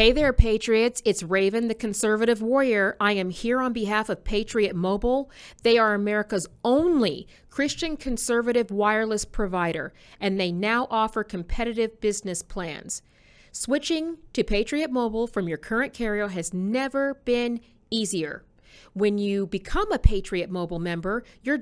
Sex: female